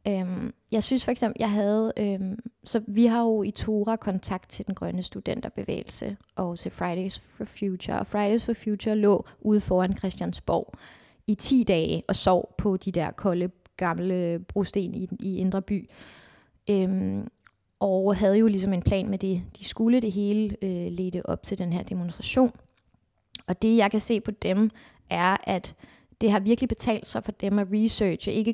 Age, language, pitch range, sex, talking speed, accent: 20-39, Danish, 180-210 Hz, female, 180 wpm, native